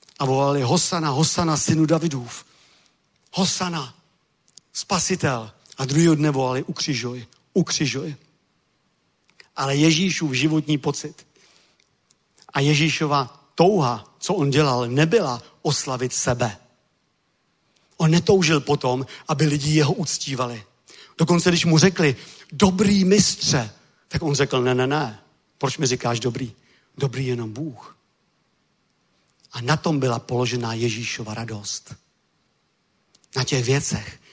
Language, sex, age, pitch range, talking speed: Czech, male, 50-69, 125-155 Hz, 110 wpm